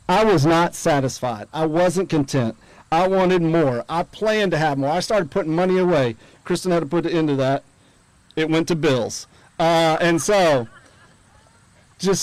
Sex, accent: male, American